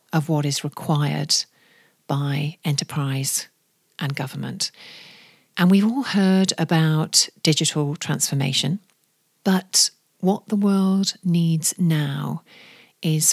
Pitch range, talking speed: 155-195 Hz, 100 wpm